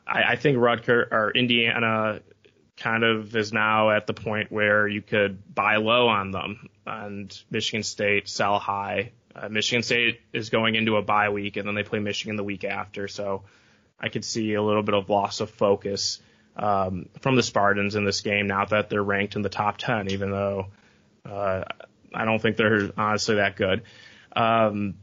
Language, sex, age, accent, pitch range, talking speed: English, male, 20-39, American, 105-115 Hz, 185 wpm